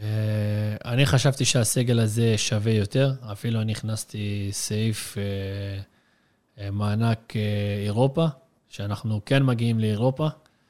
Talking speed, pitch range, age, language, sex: 100 wpm, 105-125 Hz, 20-39, Hebrew, male